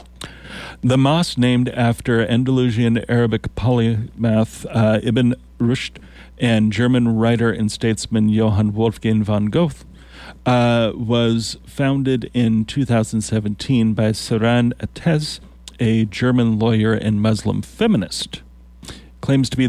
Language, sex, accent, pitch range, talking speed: English, male, American, 110-125 Hz, 110 wpm